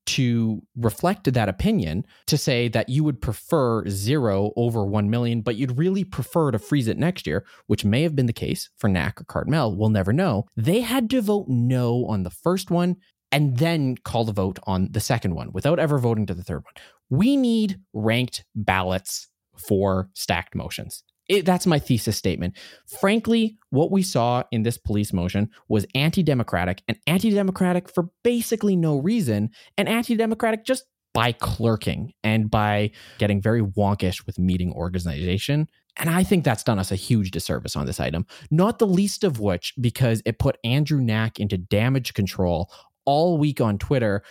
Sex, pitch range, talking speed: male, 105-165 Hz, 175 wpm